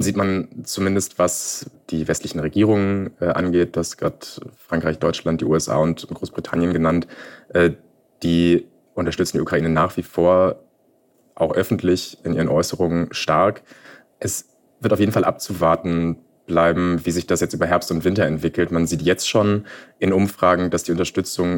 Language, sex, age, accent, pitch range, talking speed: German, male, 30-49, German, 85-95 Hz, 155 wpm